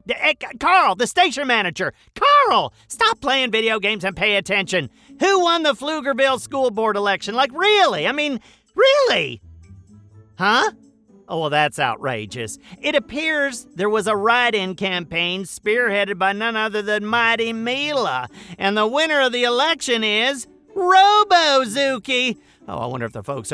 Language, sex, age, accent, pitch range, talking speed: English, male, 40-59, American, 180-275 Hz, 145 wpm